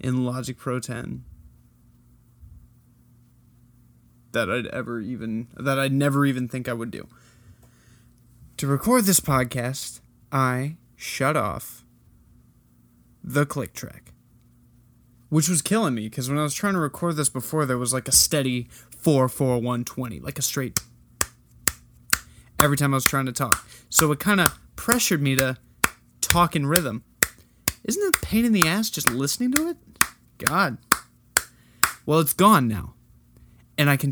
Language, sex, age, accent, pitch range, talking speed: English, male, 20-39, American, 120-150 Hz, 155 wpm